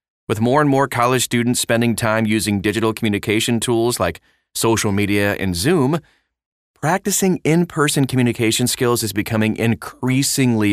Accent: American